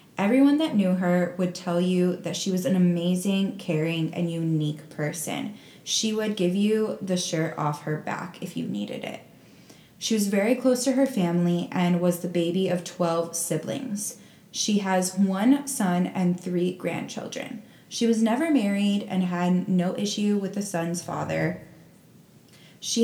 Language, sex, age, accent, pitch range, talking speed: English, female, 10-29, American, 175-210 Hz, 165 wpm